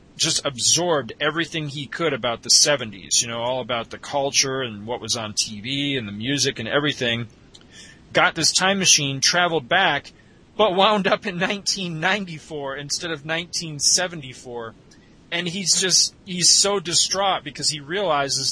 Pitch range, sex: 125-160 Hz, male